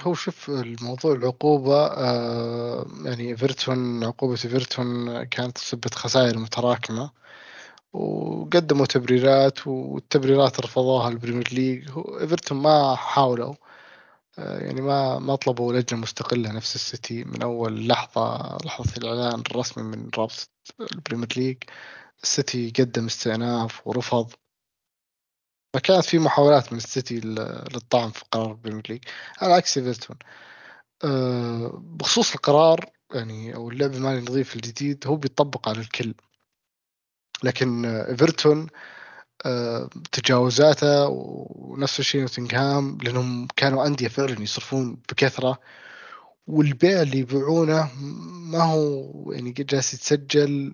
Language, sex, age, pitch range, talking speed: Arabic, male, 20-39, 120-140 Hz, 105 wpm